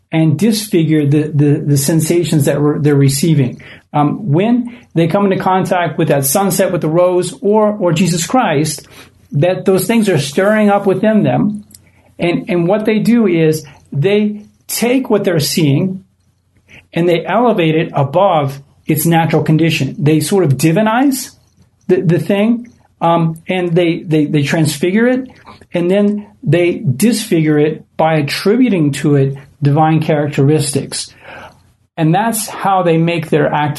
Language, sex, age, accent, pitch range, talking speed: English, male, 40-59, American, 145-185 Hz, 145 wpm